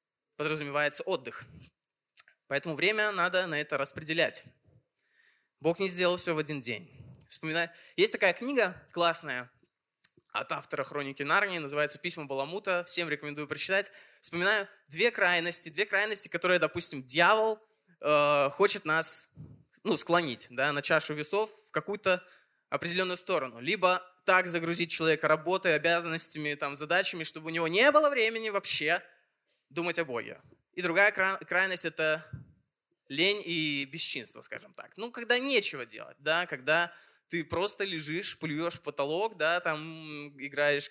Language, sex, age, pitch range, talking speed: Russian, male, 20-39, 150-190 Hz, 130 wpm